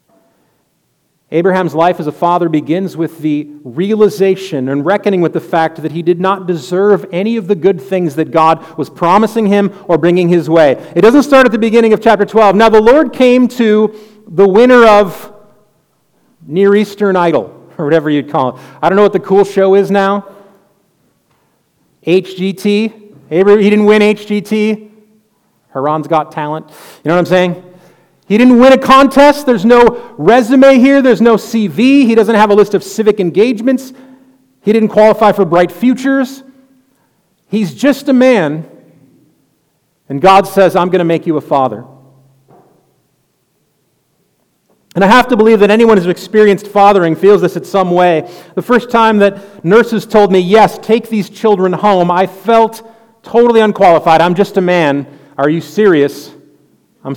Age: 40-59